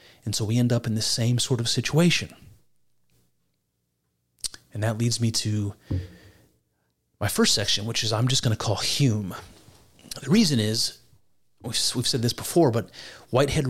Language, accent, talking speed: English, American, 160 wpm